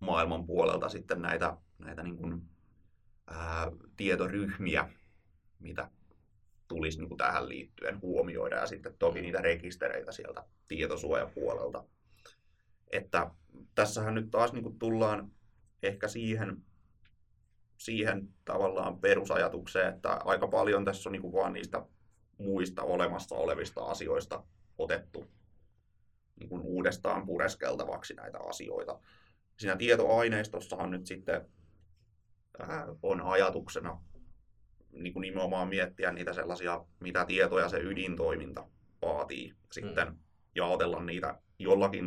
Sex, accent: male, native